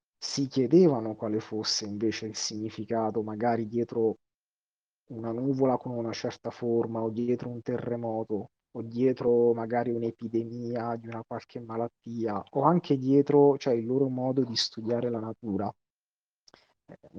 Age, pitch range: 30-49, 110-130 Hz